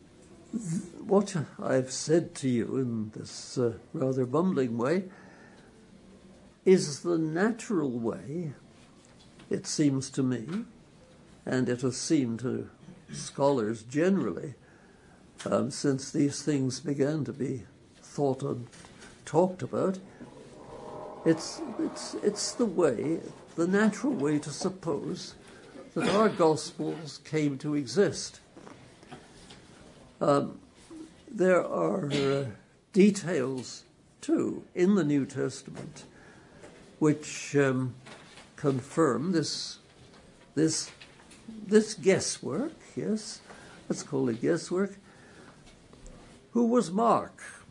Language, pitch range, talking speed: English, 135-195 Hz, 100 wpm